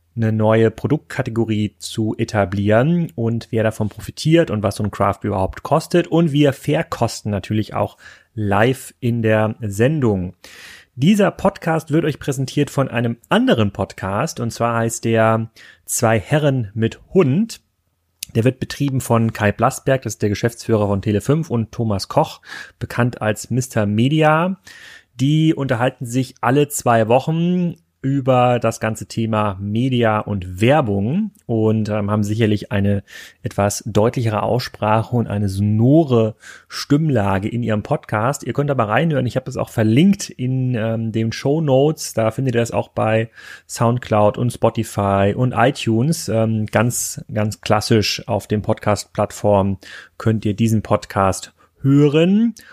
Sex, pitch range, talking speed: male, 105-135 Hz, 140 wpm